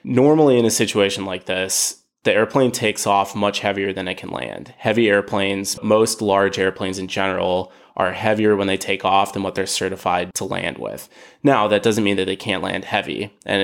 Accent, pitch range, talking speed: American, 95-105 Hz, 200 wpm